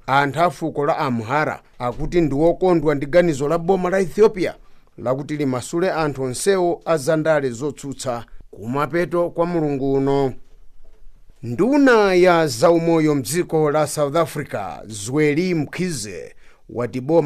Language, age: English, 50-69